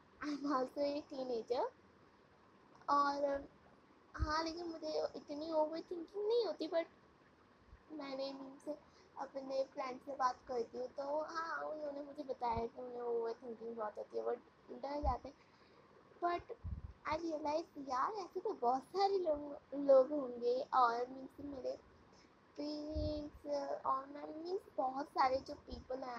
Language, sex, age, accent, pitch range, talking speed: Hindi, female, 20-39, native, 260-310 Hz, 135 wpm